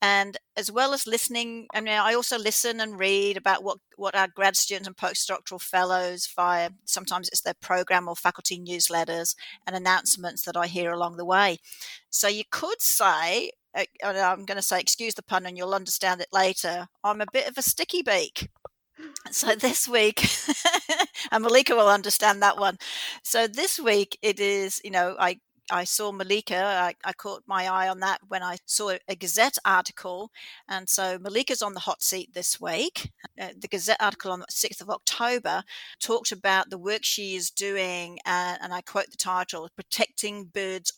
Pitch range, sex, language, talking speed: 185-225 Hz, female, English, 185 wpm